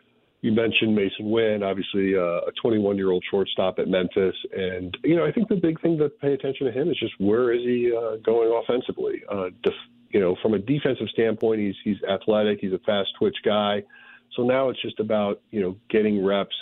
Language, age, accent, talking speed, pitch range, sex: English, 40-59, American, 195 wpm, 95-120 Hz, male